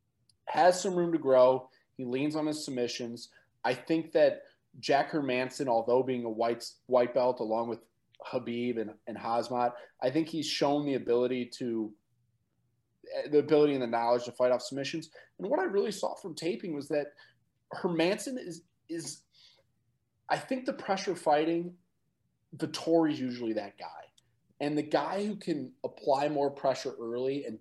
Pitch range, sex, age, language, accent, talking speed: 120-155 Hz, male, 30-49, English, American, 165 wpm